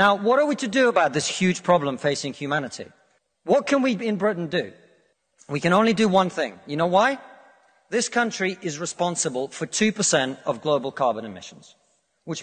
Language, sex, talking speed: English, male, 185 wpm